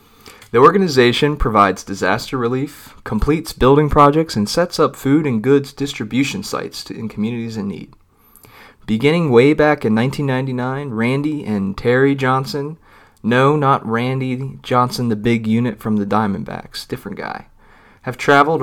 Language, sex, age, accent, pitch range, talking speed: English, male, 30-49, American, 105-145 Hz, 140 wpm